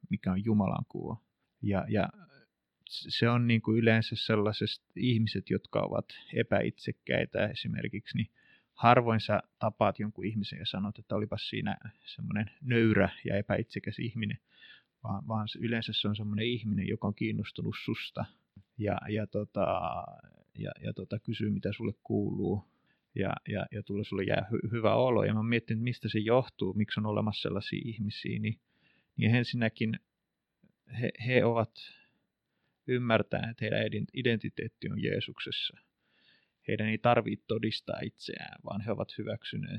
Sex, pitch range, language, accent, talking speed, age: male, 105-115 Hz, Finnish, native, 140 wpm, 30-49